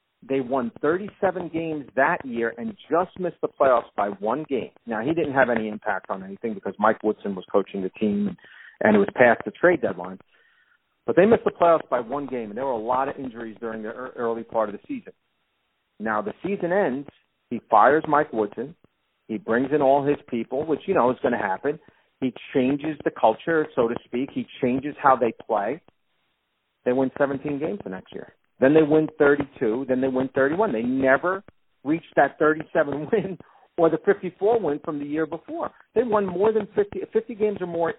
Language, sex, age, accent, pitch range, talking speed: English, male, 40-59, American, 130-180 Hz, 205 wpm